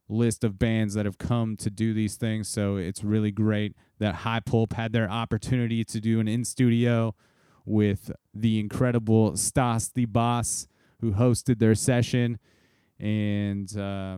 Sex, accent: male, American